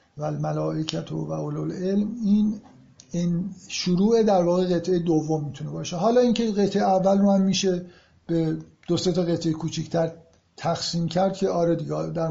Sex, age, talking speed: male, 50-69, 155 wpm